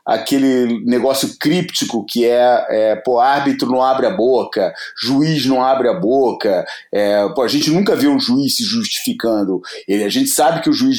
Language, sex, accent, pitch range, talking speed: Portuguese, male, Brazilian, 125-190 Hz, 180 wpm